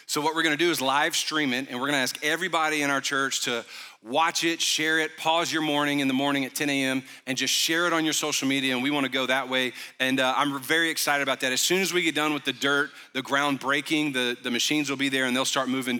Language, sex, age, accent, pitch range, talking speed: English, male, 40-59, American, 135-160 Hz, 275 wpm